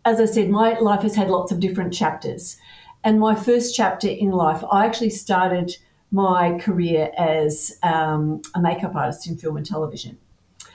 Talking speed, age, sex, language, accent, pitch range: 175 wpm, 50-69, female, English, Australian, 170-215 Hz